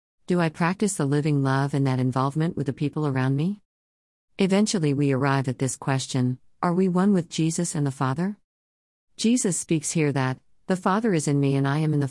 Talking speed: 210 wpm